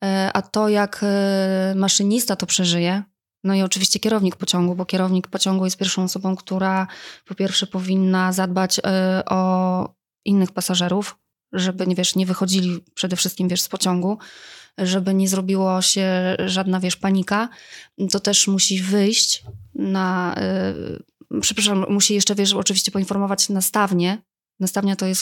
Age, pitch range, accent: 20-39, 185-200 Hz, native